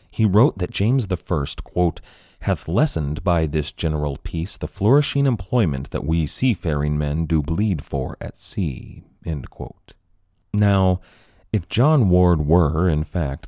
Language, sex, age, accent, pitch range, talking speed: English, male, 30-49, American, 75-90 Hz, 145 wpm